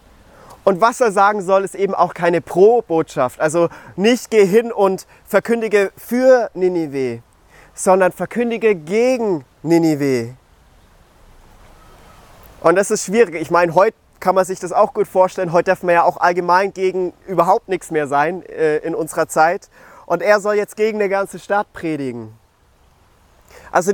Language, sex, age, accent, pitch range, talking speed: German, male, 30-49, German, 150-195 Hz, 155 wpm